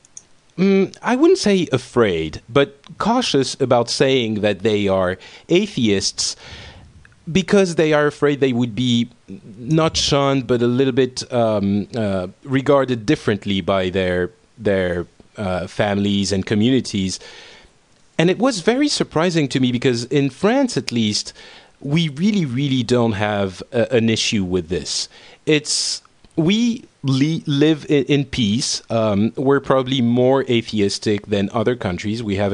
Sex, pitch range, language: male, 100-140 Hz, English